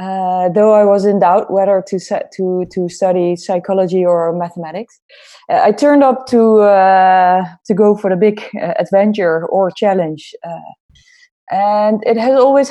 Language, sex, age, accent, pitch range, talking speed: English, female, 20-39, Dutch, 180-220 Hz, 165 wpm